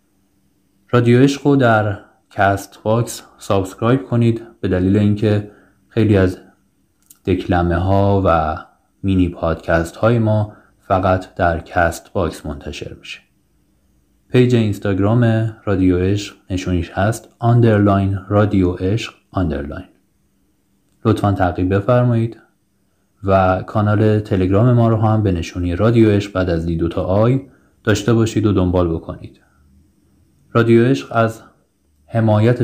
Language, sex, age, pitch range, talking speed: English, male, 30-49, 90-110 Hz, 115 wpm